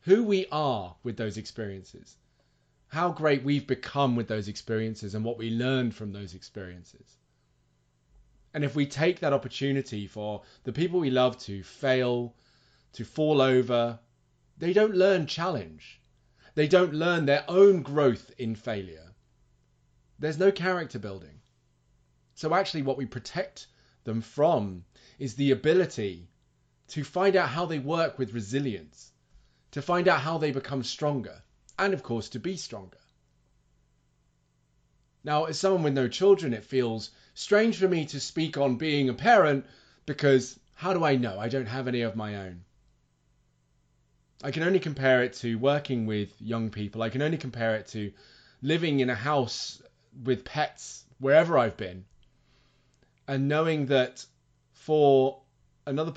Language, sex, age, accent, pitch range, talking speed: English, male, 30-49, British, 100-150 Hz, 150 wpm